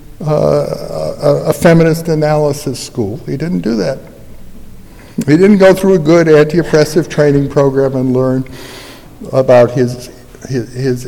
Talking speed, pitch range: 135 wpm, 120-160 Hz